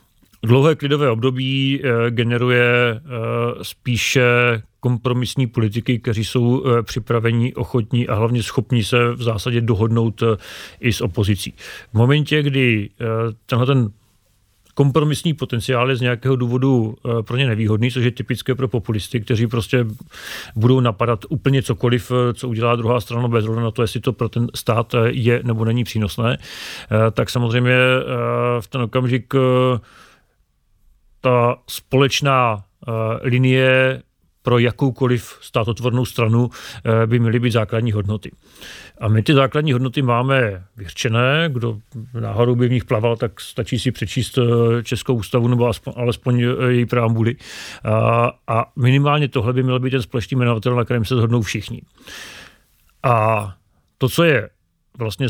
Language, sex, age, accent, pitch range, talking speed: Czech, male, 40-59, native, 115-130 Hz, 135 wpm